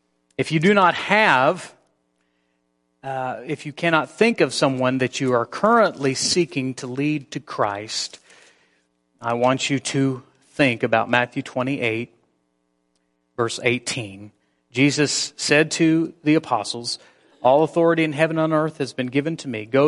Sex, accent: male, American